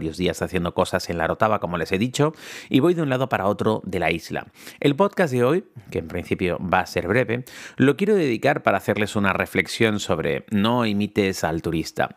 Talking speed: 210 wpm